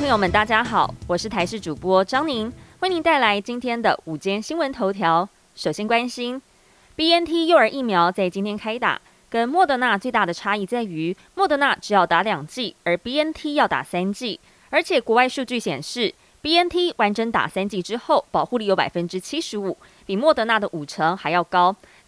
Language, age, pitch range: Chinese, 20-39, 190-270 Hz